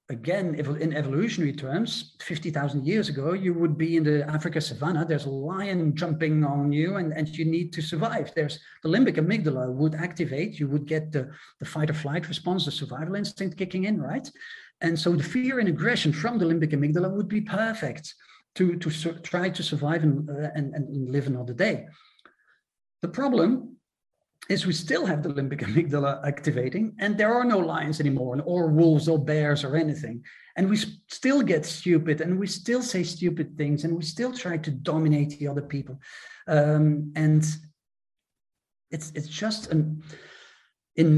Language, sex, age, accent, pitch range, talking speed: Danish, male, 40-59, Dutch, 145-175 Hz, 180 wpm